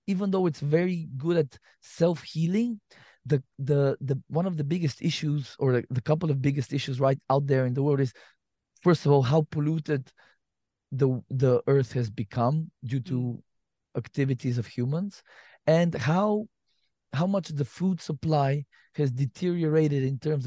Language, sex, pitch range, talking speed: English, male, 130-155 Hz, 160 wpm